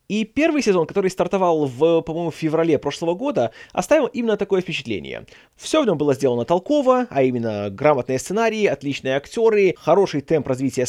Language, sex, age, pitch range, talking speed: Russian, male, 20-39, 125-180 Hz, 165 wpm